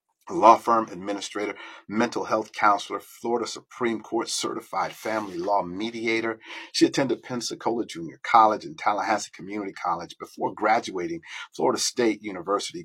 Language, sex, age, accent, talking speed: English, male, 50-69, American, 125 wpm